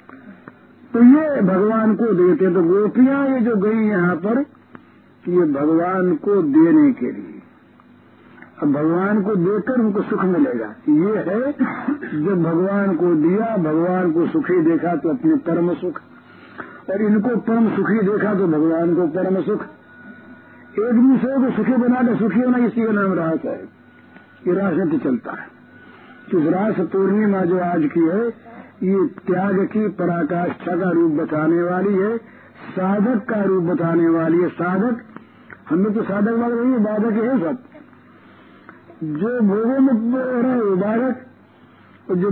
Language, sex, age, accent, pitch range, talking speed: Hindi, male, 50-69, native, 185-250 Hz, 145 wpm